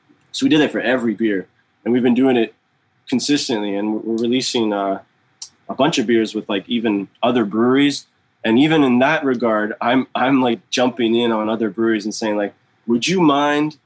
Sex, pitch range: male, 110-135 Hz